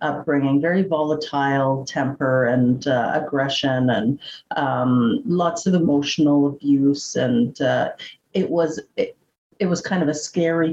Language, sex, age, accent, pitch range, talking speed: English, female, 50-69, American, 135-165 Hz, 135 wpm